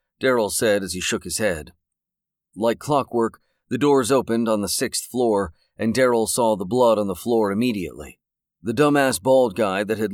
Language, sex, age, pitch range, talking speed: English, male, 40-59, 100-120 Hz, 185 wpm